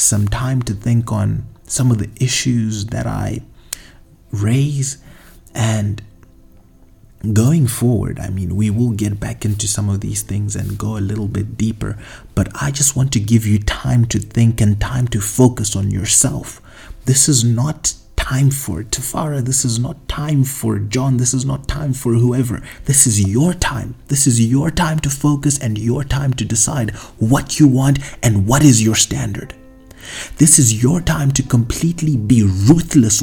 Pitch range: 105-135 Hz